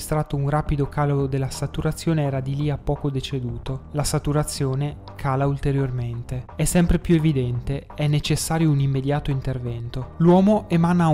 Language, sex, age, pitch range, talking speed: Italian, male, 20-39, 135-155 Hz, 140 wpm